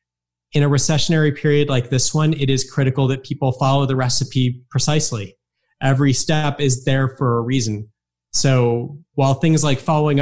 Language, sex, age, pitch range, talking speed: English, male, 30-49, 125-145 Hz, 165 wpm